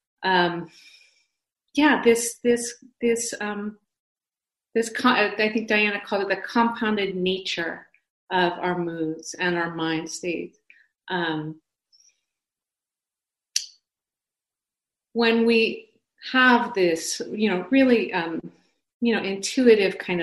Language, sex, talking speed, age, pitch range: English, female, 100 wpm, 40-59, 175-225 Hz